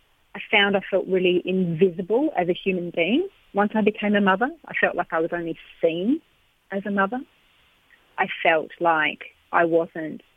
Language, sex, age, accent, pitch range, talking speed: English, female, 40-59, Australian, 175-220 Hz, 175 wpm